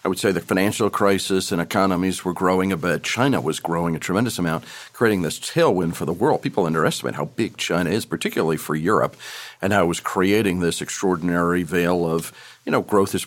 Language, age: English, 50-69